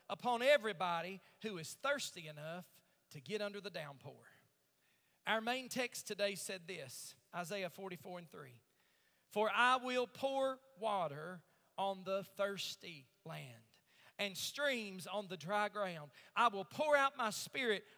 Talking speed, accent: 140 wpm, American